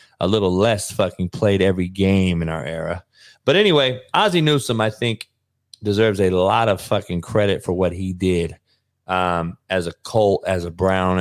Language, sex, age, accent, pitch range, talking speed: English, male, 30-49, American, 95-115 Hz, 175 wpm